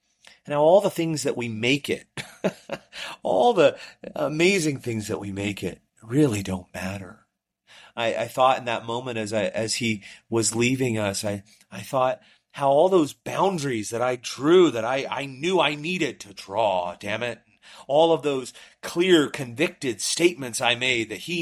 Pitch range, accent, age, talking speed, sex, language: 95-130 Hz, American, 30-49, 175 wpm, male, English